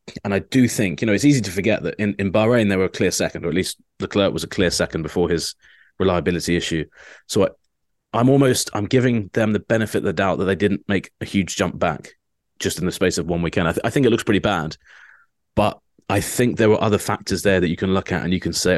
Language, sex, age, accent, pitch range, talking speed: English, male, 30-49, British, 90-110 Hz, 270 wpm